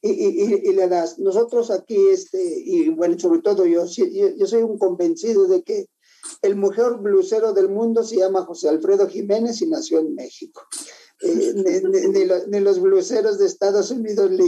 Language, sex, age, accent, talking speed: English, male, 50-69, Mexican, 195 wpm